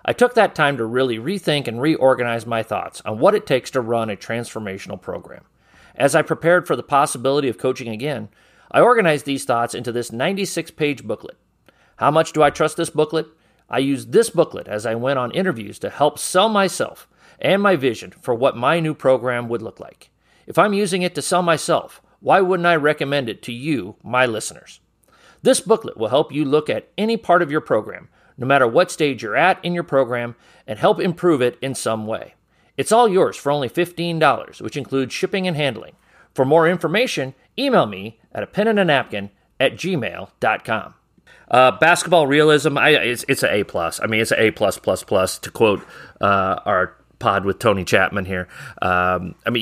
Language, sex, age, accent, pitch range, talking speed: English, male, 40-59, American, 115-165 Hz, 195 wpm